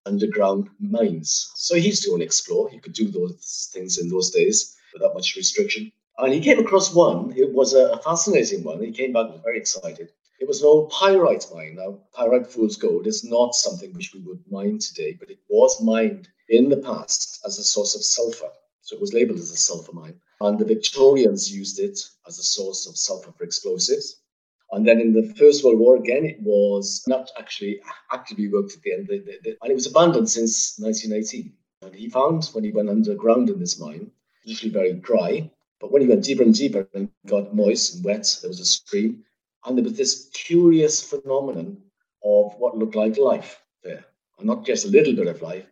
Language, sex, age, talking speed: English, male, 50-69, 205 wpm